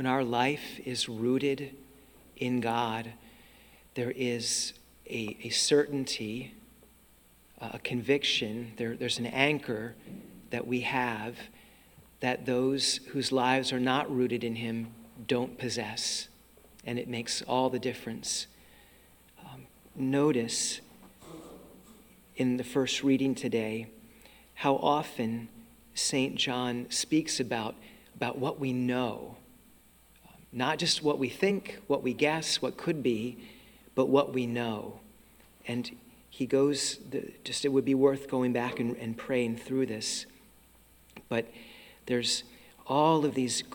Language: English